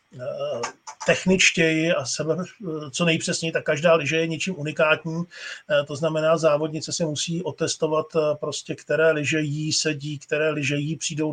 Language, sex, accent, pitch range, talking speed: Czech, male, native, 150-170 Hz, 130 wpm